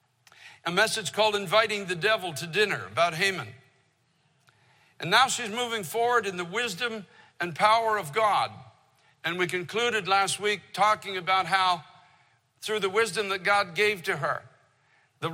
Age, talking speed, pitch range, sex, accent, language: 60-79, 155 wpm, 165-220 Hz, male, American, English